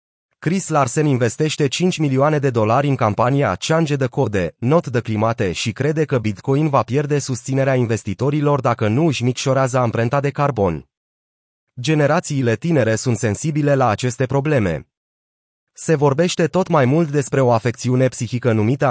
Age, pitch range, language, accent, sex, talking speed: 30-49, 115-150 Hz, Romanian, native, male, 150 wpm